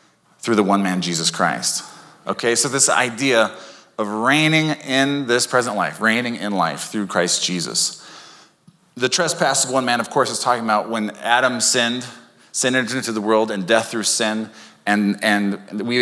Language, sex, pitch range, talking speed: English, male, 100-130 Hz, 175 wpm